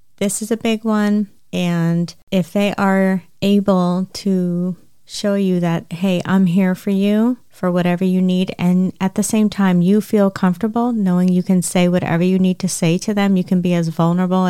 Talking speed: 195 wpm